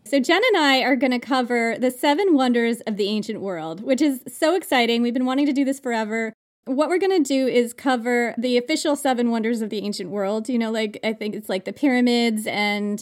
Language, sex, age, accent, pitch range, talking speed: English, female, 30-49, American, 225-285 Hz, 235 wpm